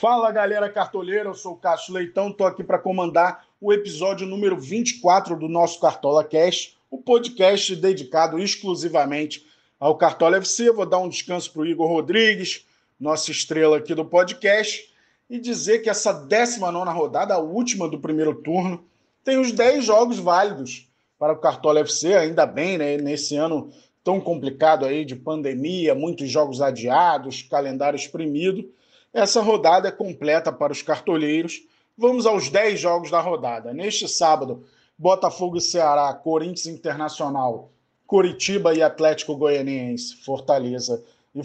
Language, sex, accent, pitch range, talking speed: Portuguese, male, Brazilian, 150-195 Hz, 145 wpm